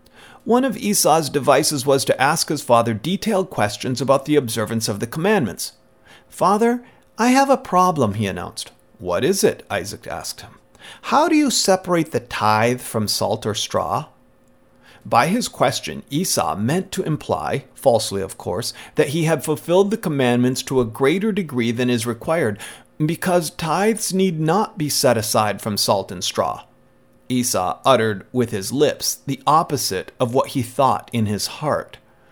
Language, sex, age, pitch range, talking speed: English, male, 40-59, 110-165 Hz, 165 wpm